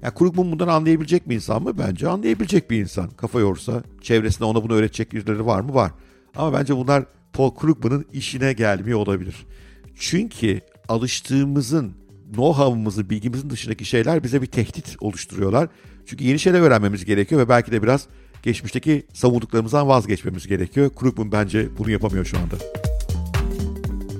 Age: 50-69